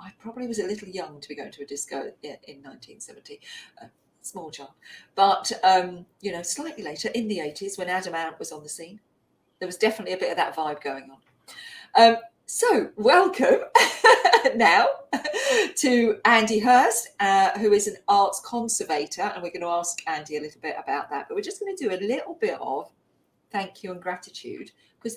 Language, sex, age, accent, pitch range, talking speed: English, female, 40-59, British, 160-240 Hz, 195 wpm